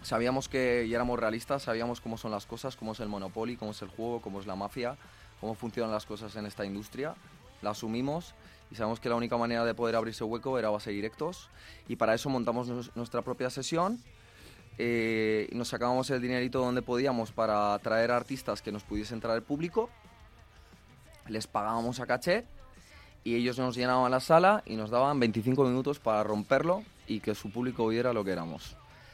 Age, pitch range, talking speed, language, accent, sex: 20-39, 105-120 Hz, 190 wpm, Spanish, Spanish, male